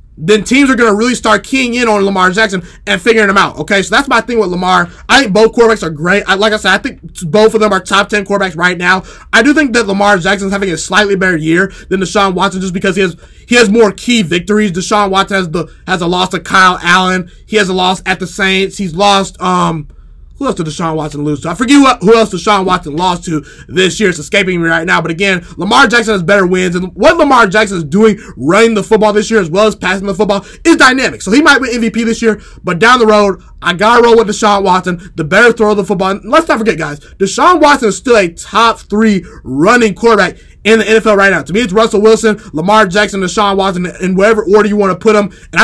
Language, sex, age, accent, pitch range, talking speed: English, male, 20-39, American, 185-220 Hz, 255 wpm